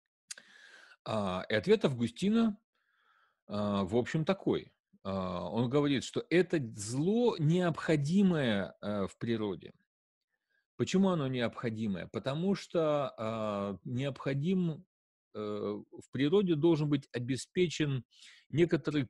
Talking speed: 80 wpm